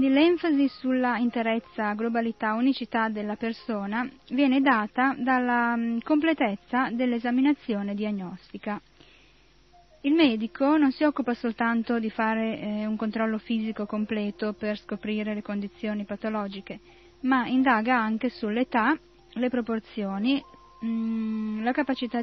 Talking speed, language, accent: 105 wpm, Italian, native